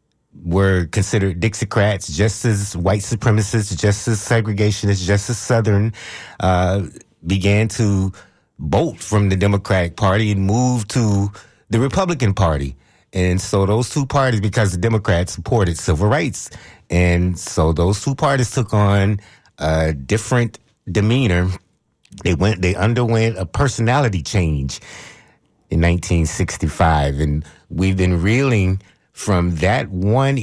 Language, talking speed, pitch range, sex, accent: English, 125 wpm, 90-115 Hz, male, American